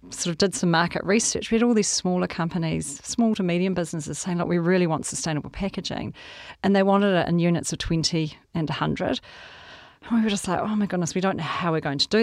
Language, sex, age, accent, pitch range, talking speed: English, female, 40-59, Australian, 150-185 Hz, 240 wpm